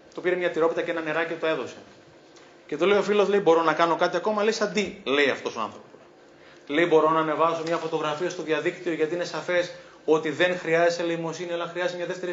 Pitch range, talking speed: 150-185 Hz, 220 wpm